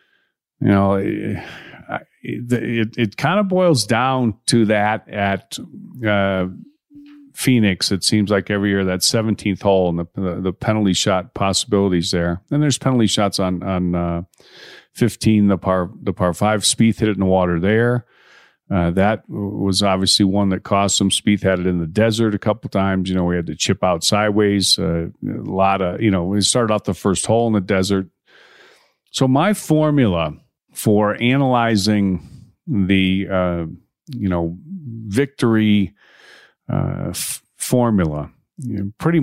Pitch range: 95-115 Hz